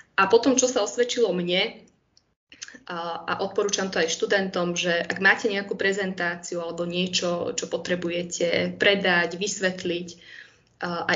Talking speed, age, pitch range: 125 wpm, 20-39, 170-200 Hz